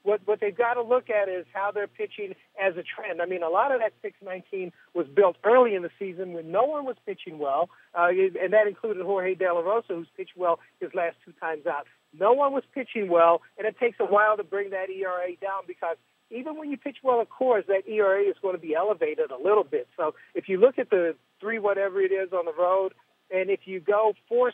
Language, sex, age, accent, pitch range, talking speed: English, male, 60-79, American, 180-215 Hz, 245 wpm